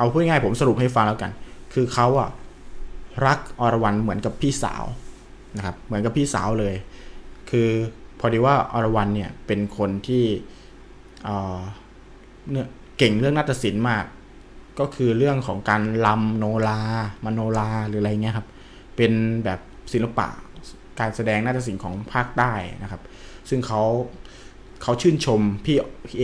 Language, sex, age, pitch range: Thai, male, 20-39, 100-120 Hz